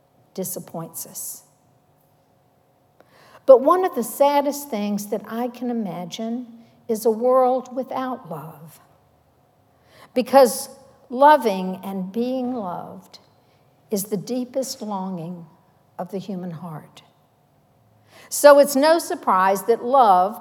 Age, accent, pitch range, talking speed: 60-79, American, 185-250 Hz, 105 wpm